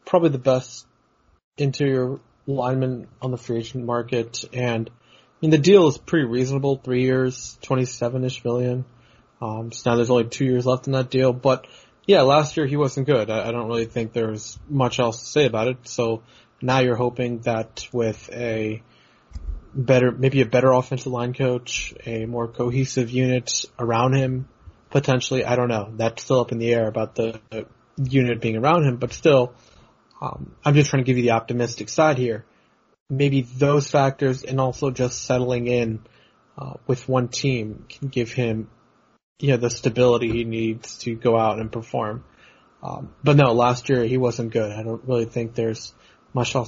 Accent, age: American, 20-39